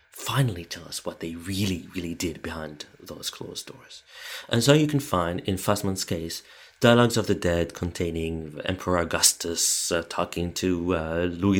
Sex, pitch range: male, 85-105 Hz